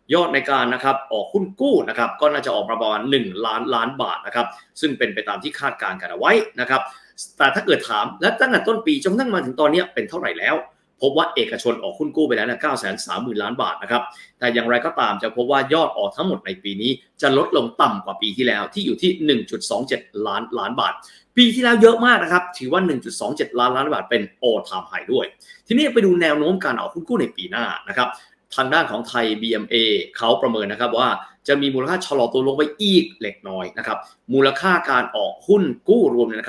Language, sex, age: Thai, male, 30-49